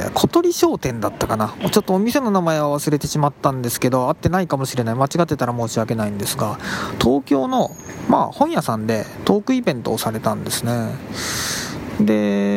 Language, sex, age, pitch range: Japanese, male, 20-39, 120-185 Hz